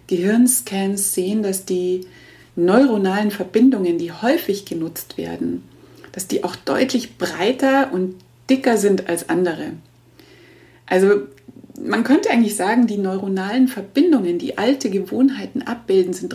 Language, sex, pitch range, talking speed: German, female, 175-235 Hz, 120 wpm